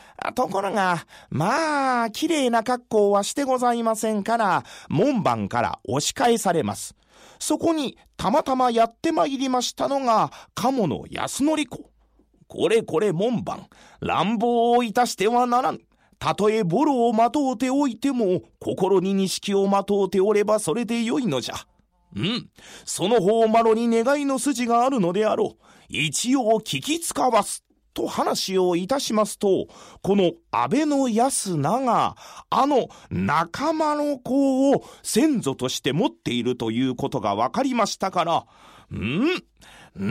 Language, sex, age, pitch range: Japanese, male, 40-59, 205-275 Hz